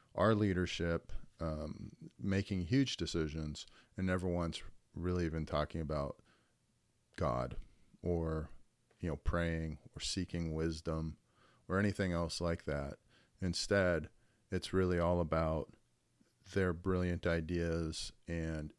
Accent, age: American, 40-59